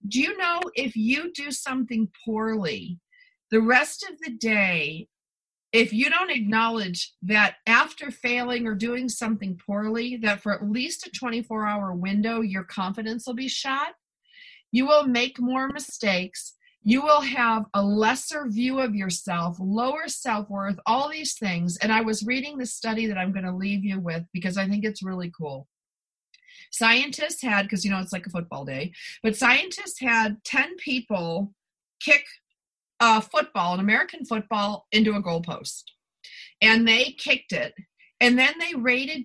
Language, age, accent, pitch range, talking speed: English, 50-69, American, 205-275 Hz, 160 wpm